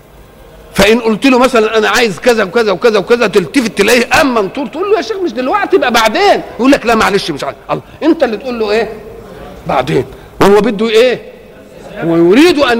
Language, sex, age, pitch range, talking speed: Arabic, male, 50-69, 185-250 Hz, 190 wpm